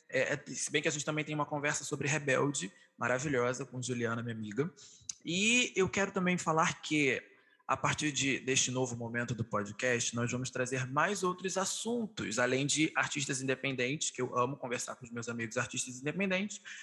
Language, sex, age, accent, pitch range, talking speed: Portuguese, male, 20-39, Brazilian, 120-170 Hz, 175 wpm